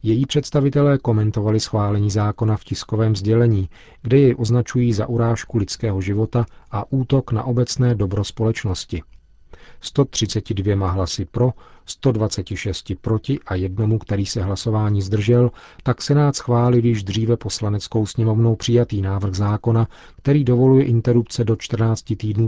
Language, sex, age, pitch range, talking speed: Czech, male, 40-59, 105-120 Hz, 130 wpm